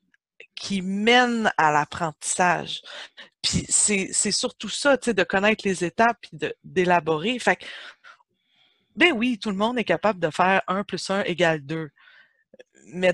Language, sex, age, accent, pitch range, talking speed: French, female, 30-49, Canadian, 175-245 Hz, 160 wpm